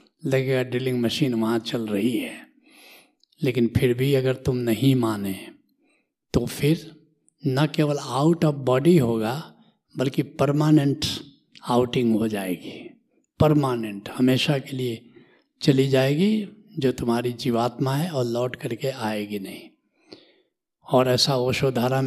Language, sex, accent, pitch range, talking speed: Hindi, male, native, 120-155 Hz, 120 wpm